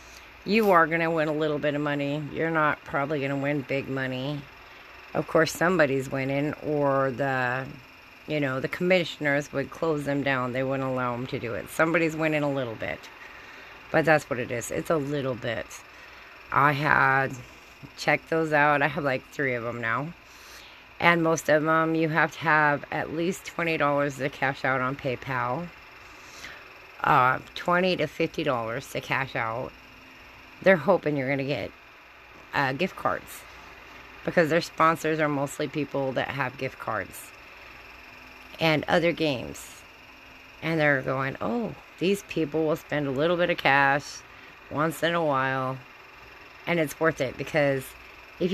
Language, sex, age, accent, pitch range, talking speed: English, female, 40-59, American, 135-160 Hz, 160 wpm